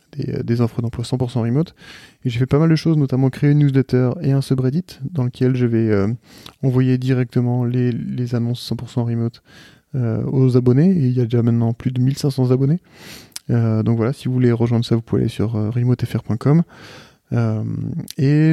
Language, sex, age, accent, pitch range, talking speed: French, male, 20-39, French, 120-135 Hz, 195 wpm